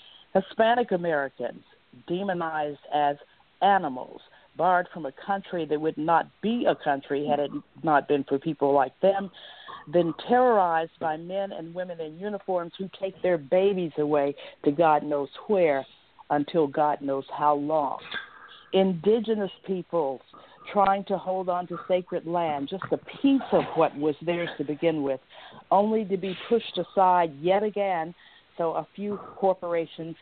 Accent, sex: American, female